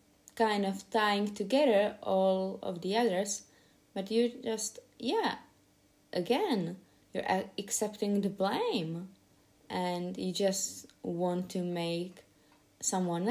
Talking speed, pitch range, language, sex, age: 110 wpm, 175-230 Hz, English, female, 20-39